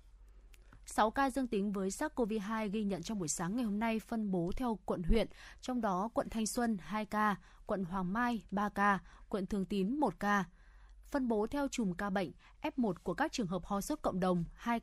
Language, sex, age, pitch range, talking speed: Vietnamese, female, 20-39, 185-235 Hz, 210 wpm